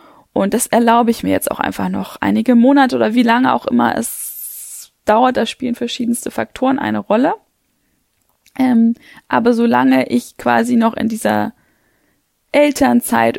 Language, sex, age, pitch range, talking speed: German, female, 10-29, 185-265 Hz, 150 wpm